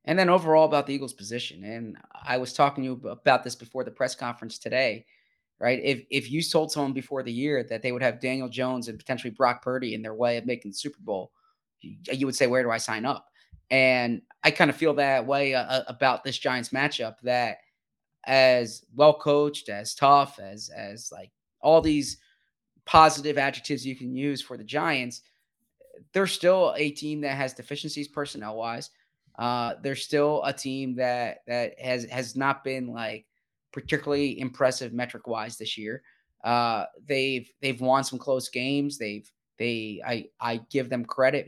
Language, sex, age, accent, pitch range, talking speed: English, male, 20-39, American, 120-140 Hz, 180 wpm